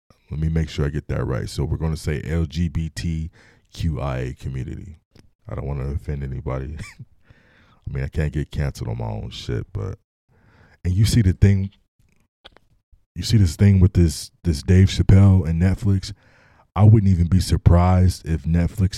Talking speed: 175 wpm